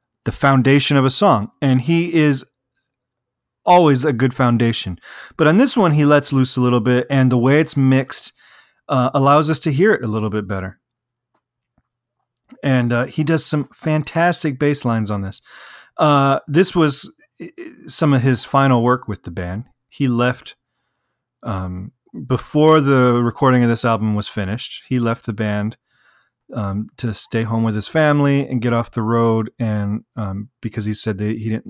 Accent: American